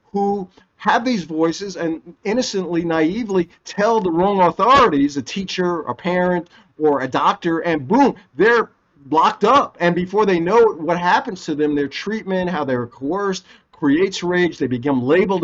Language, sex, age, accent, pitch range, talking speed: English, male, 50-69, American, 155-200 Hz, 160 wpm